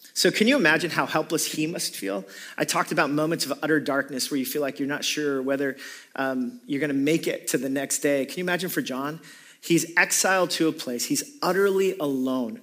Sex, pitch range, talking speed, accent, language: male, 135-190 Hz, 220 wpm, American, English